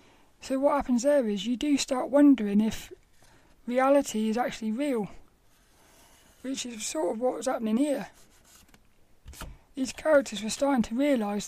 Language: English